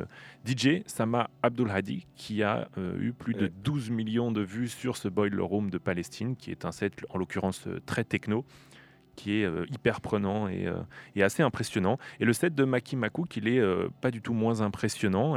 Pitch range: 105-125 Hz